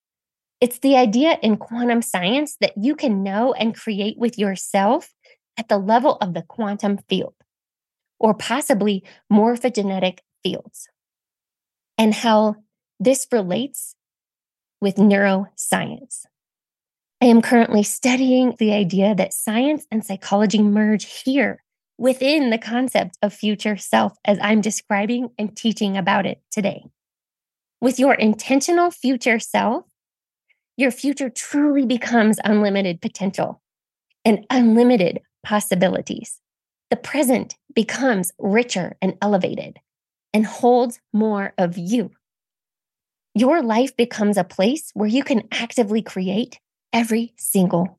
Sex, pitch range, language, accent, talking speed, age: female, 205-250 Hz, English, American, 120 wpm, 20-39